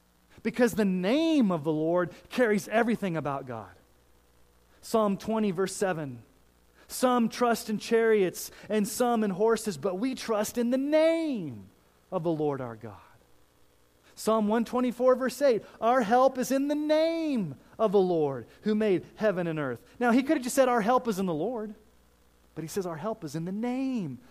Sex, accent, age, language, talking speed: male, American, 30-49, English, 180 wpm